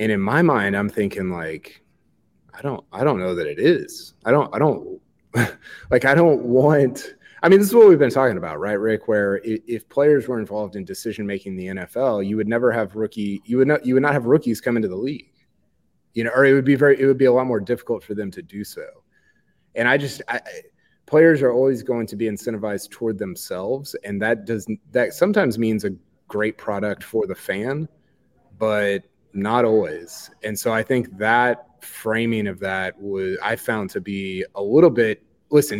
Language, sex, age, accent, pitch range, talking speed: English, male, 30-49, American, 100-135 Hz, 215 wpm